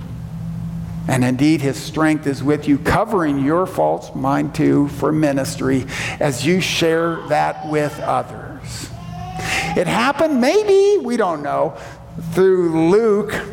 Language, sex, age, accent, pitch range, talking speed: English, male, 50-69, American, 145-180 Hz, 125 wpm